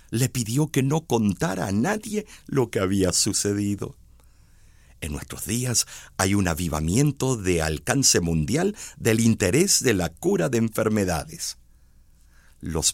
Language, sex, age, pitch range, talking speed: Spanish, male, 50-69, 80-125 Hz, 130 wpm